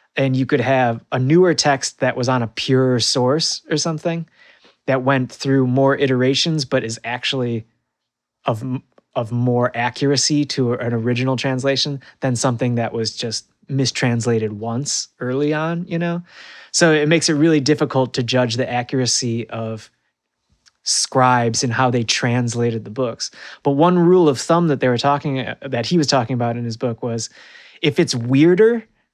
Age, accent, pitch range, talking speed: 20-39, American, 125-160 Hz, 165 wpm